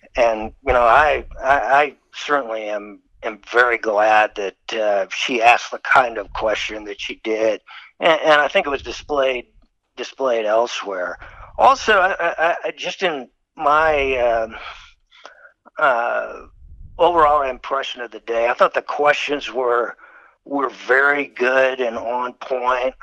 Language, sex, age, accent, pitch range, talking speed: English, male, 60-79, American, 115-155 Hz, 145 wpm